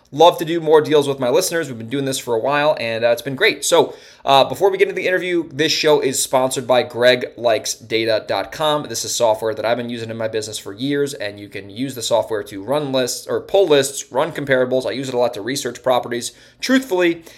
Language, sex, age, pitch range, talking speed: English, male, 20-39, 115-145 Hz, 240 wpm